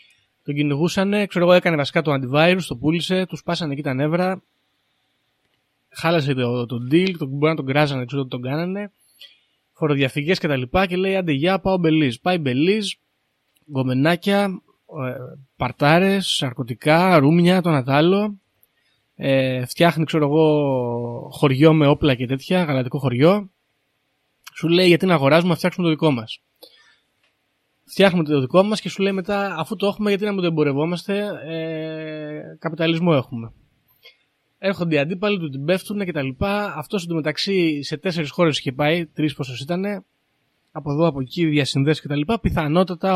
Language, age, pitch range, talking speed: Greek, 20-39, 140-185 Hz, 150 wpm